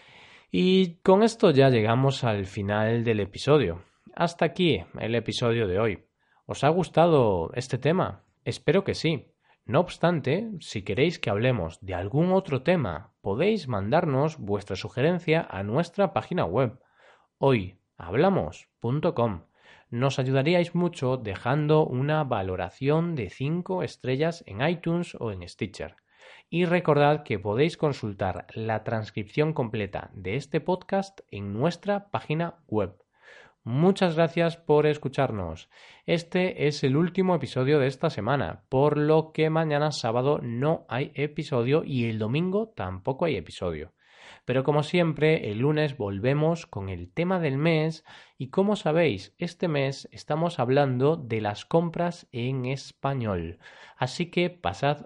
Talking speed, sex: 135 wpm, male